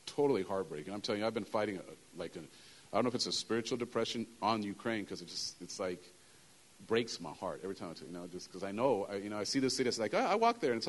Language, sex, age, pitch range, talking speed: English, male, 40-59, 110-135 Hz, 310 wpm